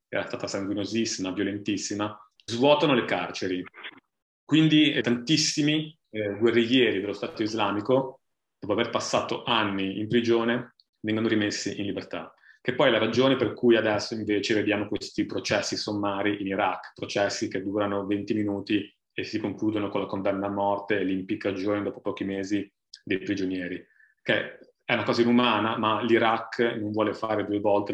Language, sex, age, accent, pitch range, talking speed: Italian, male, 30-49, native, 100-115 Hz, 150 wpm